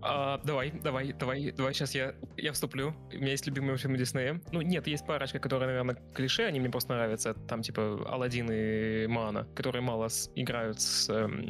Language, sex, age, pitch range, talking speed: Russian, male, 20-39, 120-140 Hz, 190 wpm